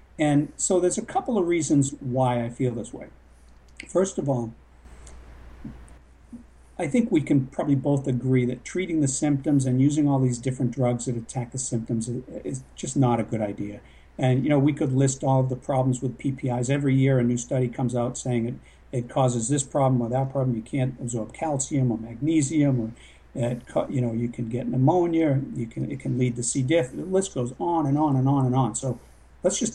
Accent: American